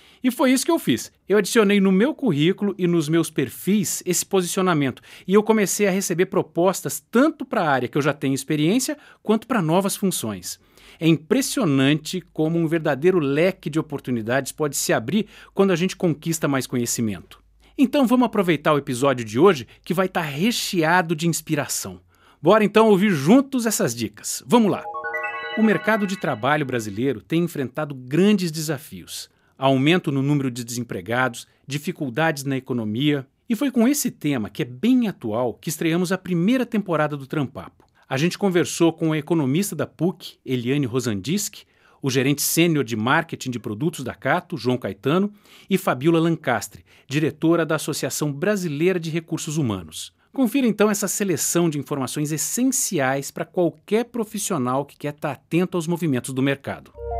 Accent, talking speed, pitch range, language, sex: Brazilian, 165 wpm, 135-195 Hz, Portuguese, male